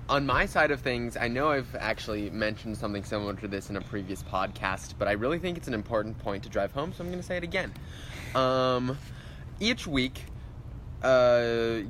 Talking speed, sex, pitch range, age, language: 200 wpm, male, 105-120 Hz, 20-39, English